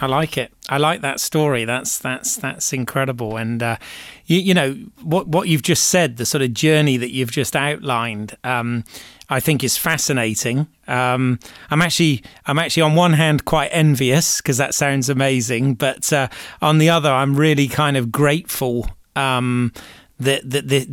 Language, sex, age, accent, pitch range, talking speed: English, male, 30-49, British, 120-145 Hz, 180 wpm